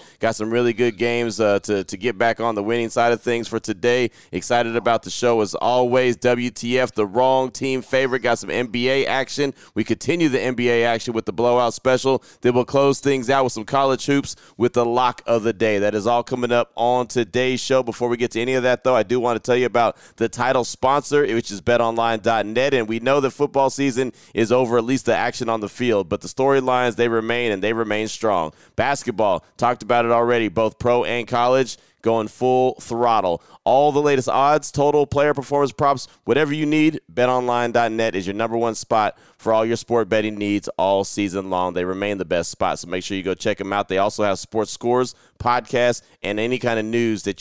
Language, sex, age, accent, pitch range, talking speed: English, male, 30-49, American, 110-125 Hz, 220 wpm